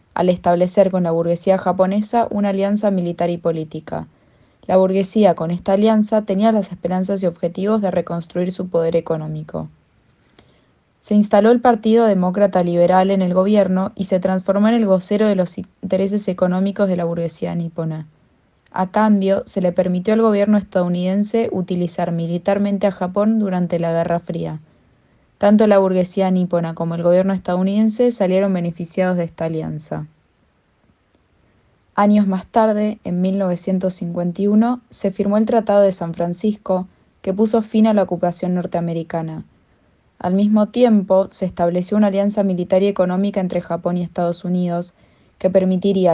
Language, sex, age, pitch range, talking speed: Spanish, female, 20-39, 175-205 Hz, 150 wpm